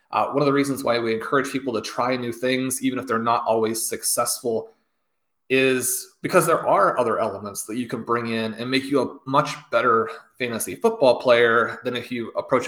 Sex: male